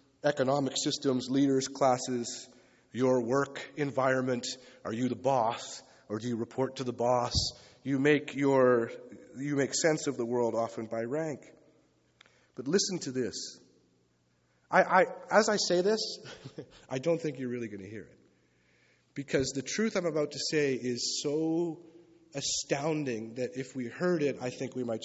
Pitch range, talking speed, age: 115-175 Hz, 165 wpm, 30-49